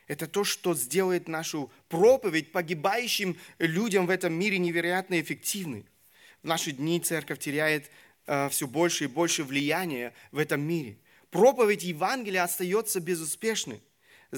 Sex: male